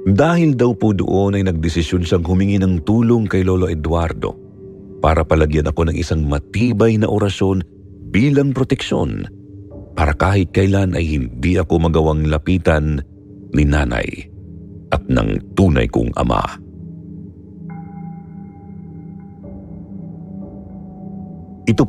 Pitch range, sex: 80-115 Hz, male